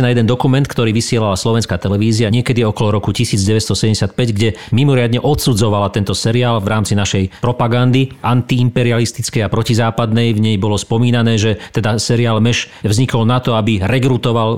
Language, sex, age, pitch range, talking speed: Slovak, male, 40-59, 105-125 Hz, 150 wpm